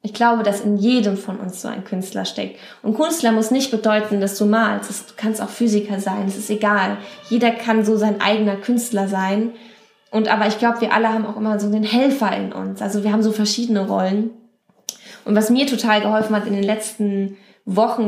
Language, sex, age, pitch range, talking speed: German, female, 20-39, 205-240 Hz, 210 wpm